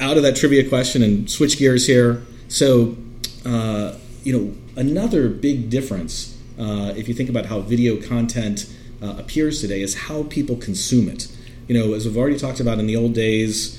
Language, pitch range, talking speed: English, 115-140 Hz, 185 wpm